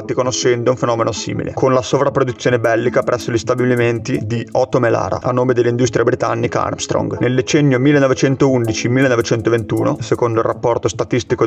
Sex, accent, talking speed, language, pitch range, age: male, native, 140 wpm, Italian, 120-130 Hz, 30-49